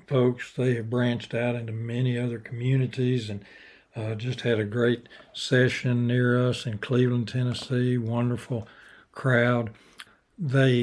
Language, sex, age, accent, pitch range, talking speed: English, male, 60-79, American, 115-130 Hz, 135 wpm